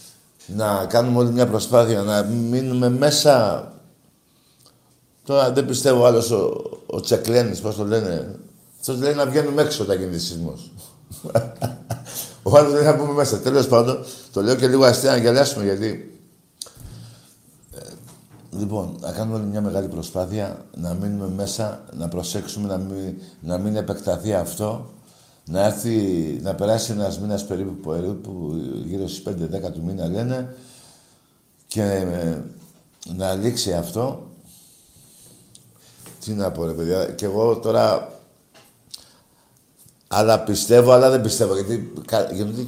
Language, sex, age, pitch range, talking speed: Greek, male, 60-79, 95-125 Hz, 130 wpm